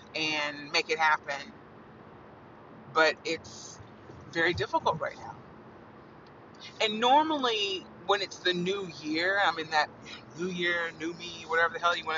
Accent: American